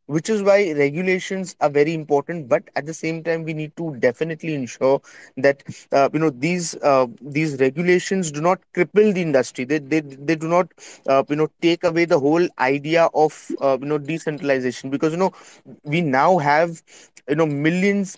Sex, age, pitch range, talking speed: male, 20-39, 145-165 Hz, 190 wpm